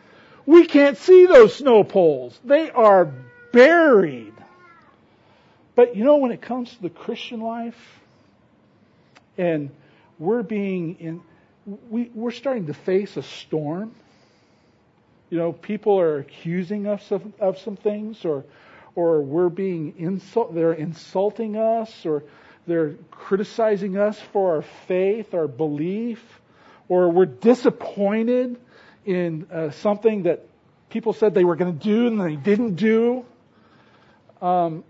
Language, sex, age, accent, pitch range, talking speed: English, male, 50-69, American, 165-225 Hz, 130 wpm